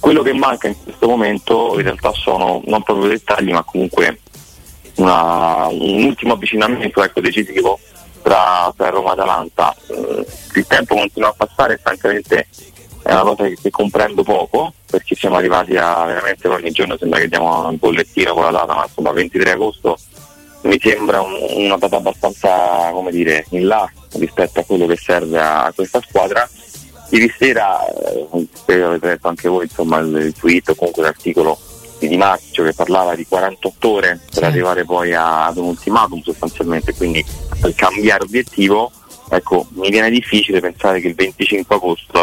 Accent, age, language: native, 30-49, Italian